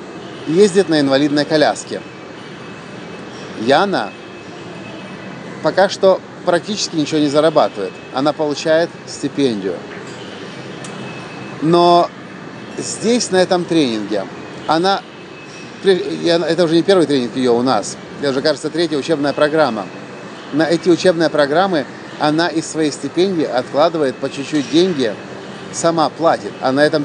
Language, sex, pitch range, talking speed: English, male, 140-170 Hz, 115 wpm